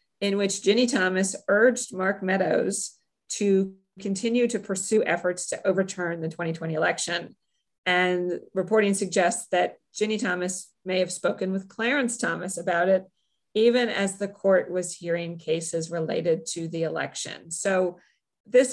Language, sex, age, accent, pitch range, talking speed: English, female, 40-59, American, 175-200 Hz, 140 wpm